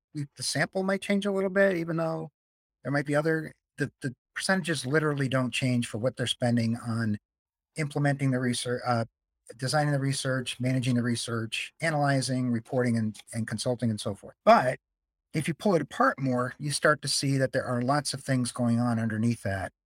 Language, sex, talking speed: English, male, 195 wpm